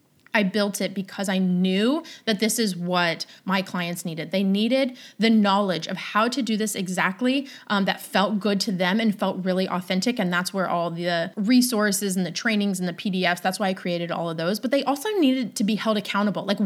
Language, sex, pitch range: English, female, 190-240 Hz